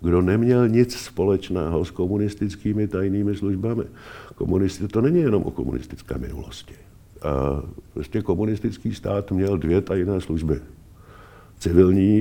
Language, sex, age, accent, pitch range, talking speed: Czech, male, 50-69, native, 85-105 Hz, 110 wpm